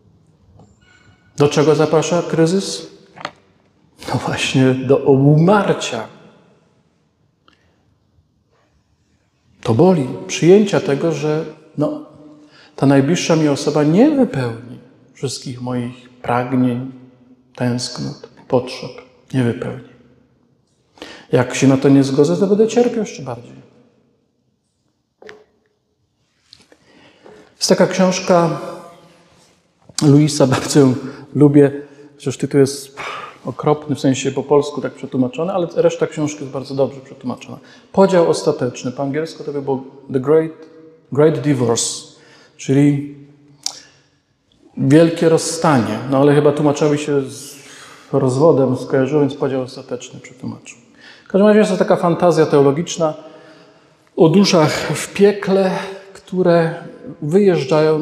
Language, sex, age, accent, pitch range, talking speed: Polish, male, 50-69, native, 135-165 Hz, 105 wpm